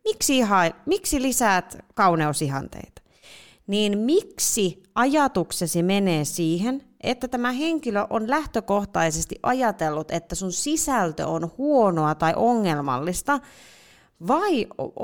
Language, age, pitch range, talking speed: Finnish, 30-49, 185-275 Hz, 95 wpm